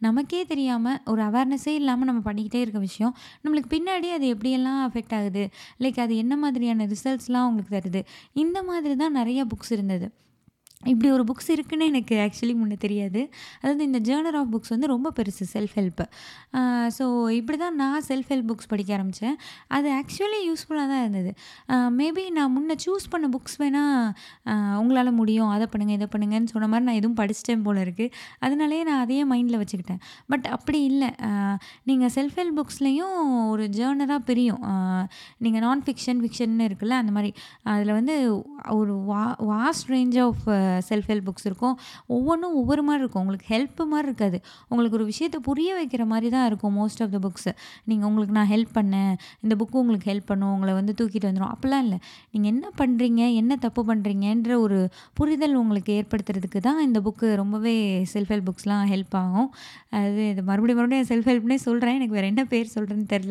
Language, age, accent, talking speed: Tamil, 20-39, native, 170 wpm